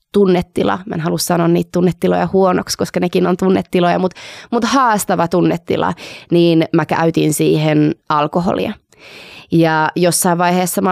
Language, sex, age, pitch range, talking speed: Finnish, female, 20-39, 160-185 Hz, 130 wpm